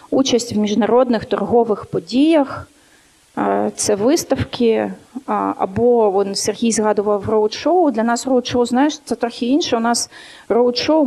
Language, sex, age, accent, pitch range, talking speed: Ukrainian, female, 30-49, native, 215-250 Hz, 115 wpm